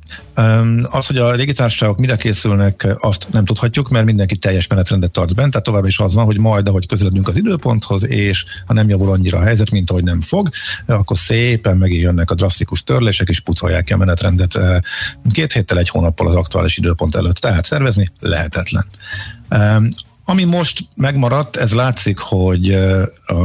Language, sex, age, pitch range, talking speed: Hungarian, male, 50-69, 95-120 Hz, 170 wpm